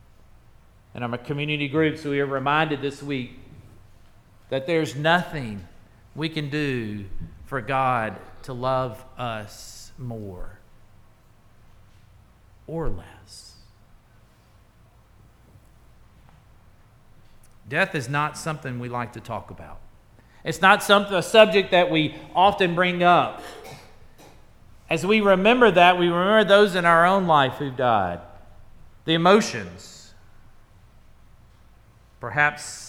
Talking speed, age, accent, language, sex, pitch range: 110 wpm, 40-59, American, English, male, 105-160 Hz